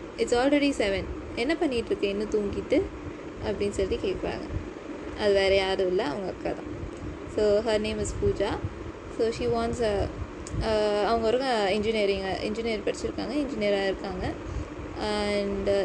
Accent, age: native, 20-39